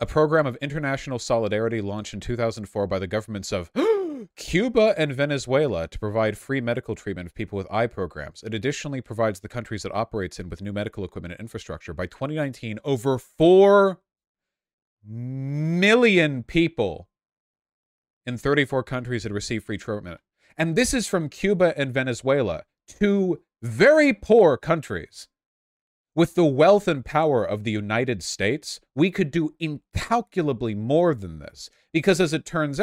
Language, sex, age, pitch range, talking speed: English, male, 30-49, 105-155 Hz, 150 wpm